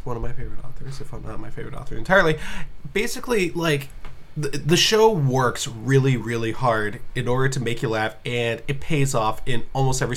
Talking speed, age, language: 200 wpm, 20-39, English